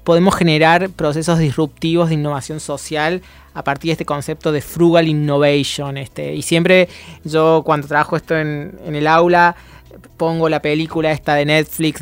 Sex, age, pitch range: male, 30-49, 145-165 Hz